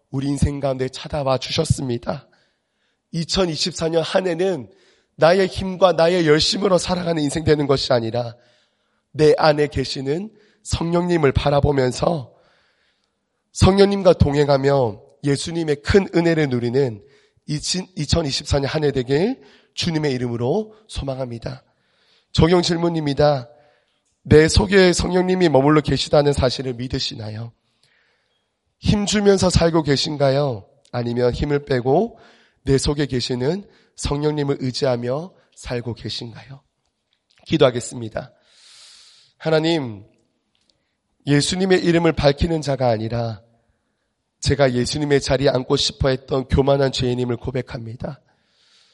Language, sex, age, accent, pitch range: Korean, male, 30-49, native, 130-165 Hz